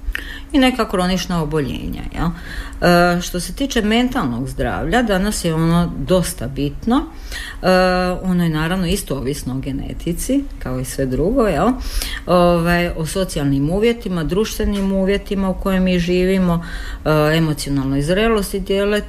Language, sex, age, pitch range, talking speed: Croatian, female, 50-69, 140-190 Hz, 130 wpm